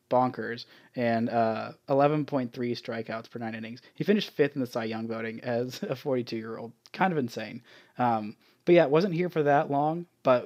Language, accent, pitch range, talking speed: English, American, 115-145 Hz, 195 wpm